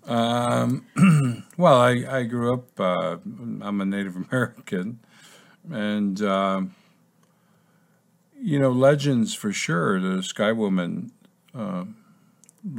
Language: English